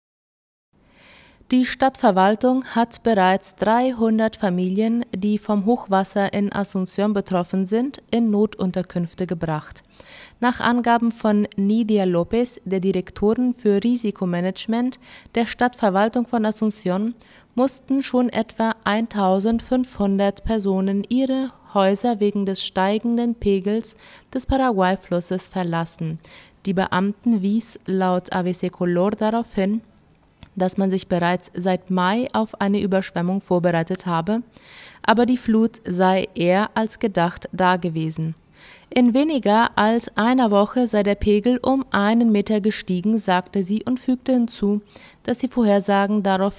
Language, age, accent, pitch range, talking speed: German, 20-39, German, 185-230 Hz, 115 wpm